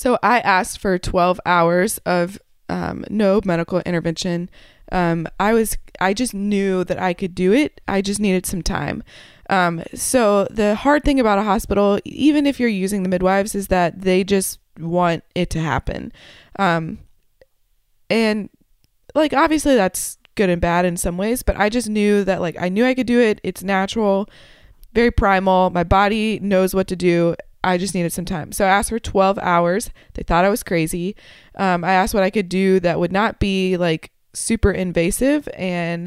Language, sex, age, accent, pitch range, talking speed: English, female, 20-39, American, 180-205 Hz, 190 wpm